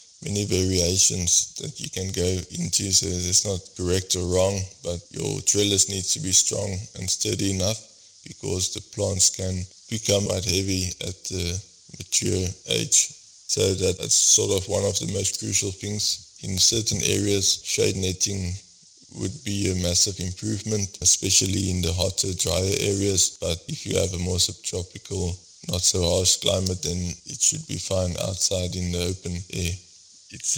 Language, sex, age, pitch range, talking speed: English, male, 20-39, 90-100 Hz, 155 wpm